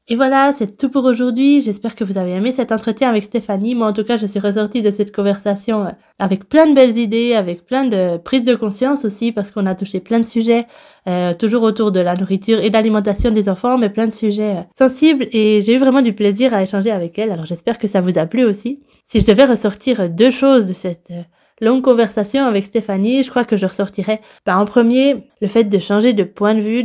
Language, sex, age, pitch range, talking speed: French, female, 20-39, 195-235 Hz, 240 wpm